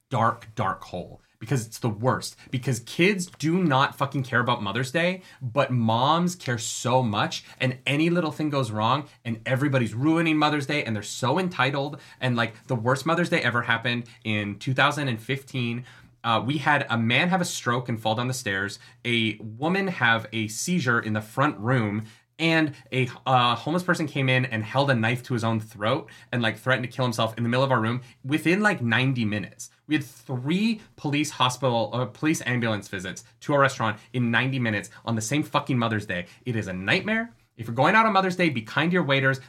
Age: 30-49